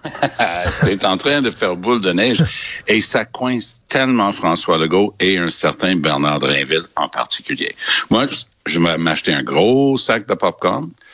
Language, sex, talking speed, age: French, male, 160 wpm, 60-79